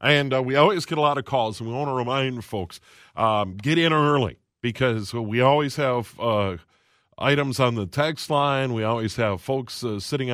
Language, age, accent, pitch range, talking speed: English, 40-59, American, 110-145 Hz, 205 wpm